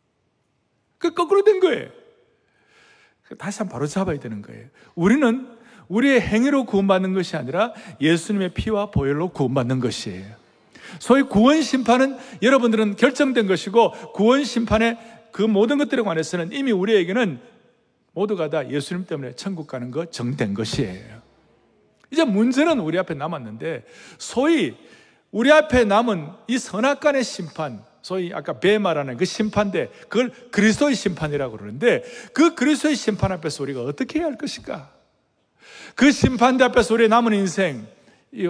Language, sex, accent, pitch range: Korean, male, native, 175-255 Hz